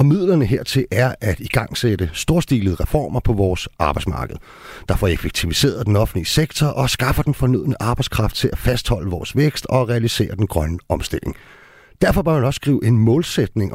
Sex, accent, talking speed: male, native, 165 wpm